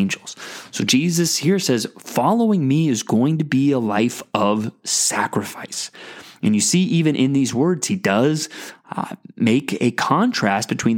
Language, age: English, 20-39